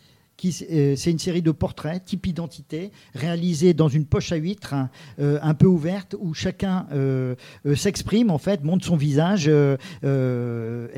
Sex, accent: male, French